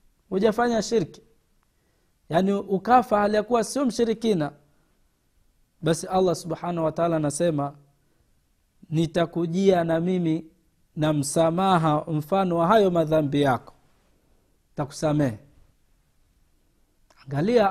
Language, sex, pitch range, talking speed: Swahili, male, 155-195 Hz, 85 wpm